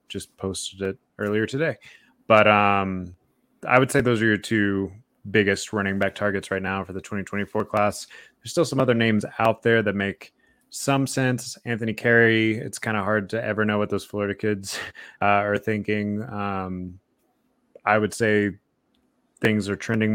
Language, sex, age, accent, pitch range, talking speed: English, male, 20-39, American, 100-115 Hz, 175 wpm